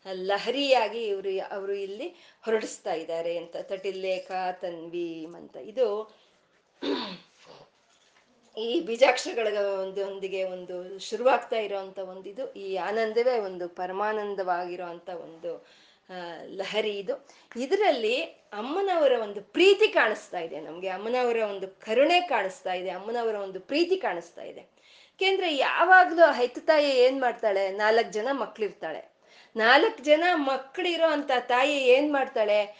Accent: native